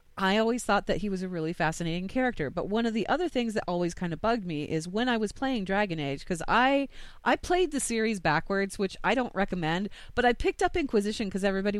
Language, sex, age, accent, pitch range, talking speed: English, female, 30-49, American, 160-205 Hz, 240 wpm